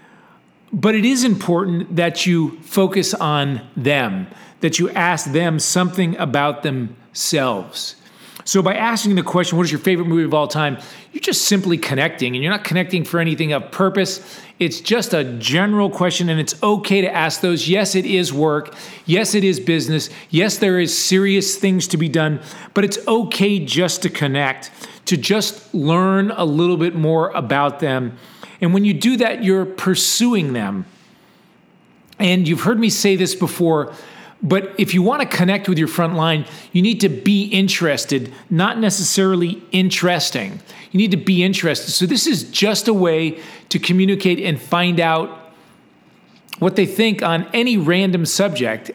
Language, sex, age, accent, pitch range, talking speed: English, male, 40-59, American, 165-200 Hz, 170 wpm